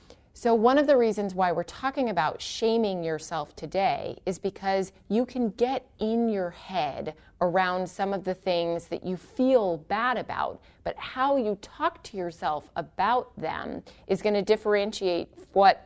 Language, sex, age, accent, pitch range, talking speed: English, female, 30-49, American, 175-225 Hz, 160 wpm